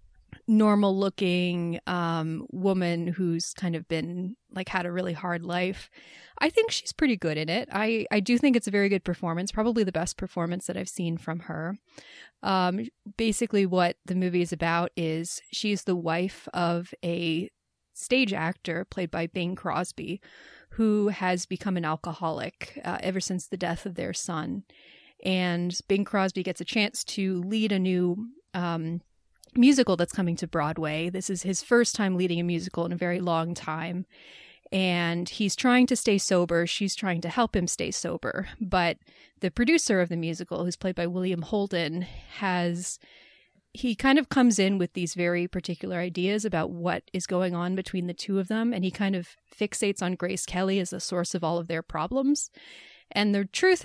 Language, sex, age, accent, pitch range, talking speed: English, female, 30-49, American, 175-205 Hz, 180 wpm